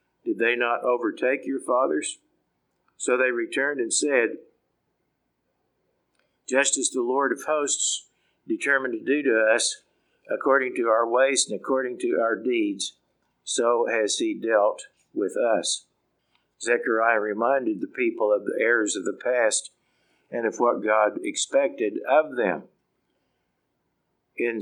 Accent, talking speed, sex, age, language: American, 135 wpm, male, 50-69, English